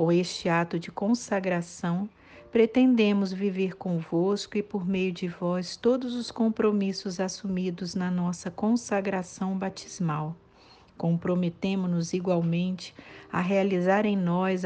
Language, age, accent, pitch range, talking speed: Portuguese, 50-69, Brazilian, 180-205 Hz, 115 wpm